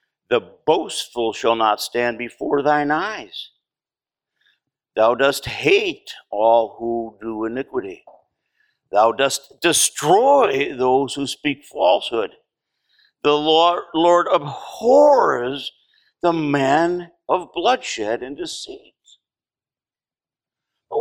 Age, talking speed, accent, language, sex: 50-69, 95 wpm, American, English, male